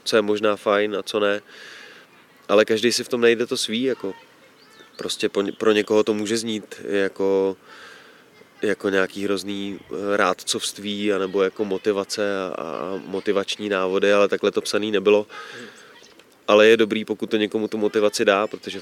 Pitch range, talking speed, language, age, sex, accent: 100-115 Hz, 155 wpm, Czech, 20-39, male, native